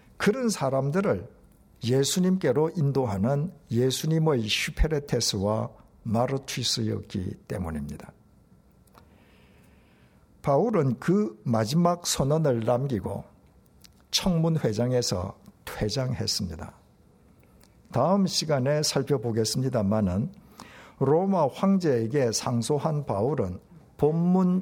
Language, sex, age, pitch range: Korean, male, 60-79, 105-165 Hz